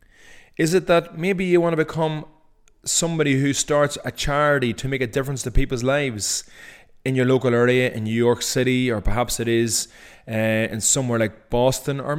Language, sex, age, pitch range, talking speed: English, male, 20-39, 110-140 Hz, 180 wpm